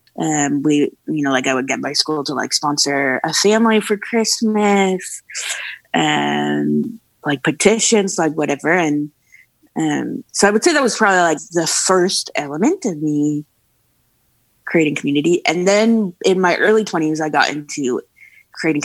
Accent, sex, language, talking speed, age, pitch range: American, female, English, 155 wpm, 20-39, 145-180 Hz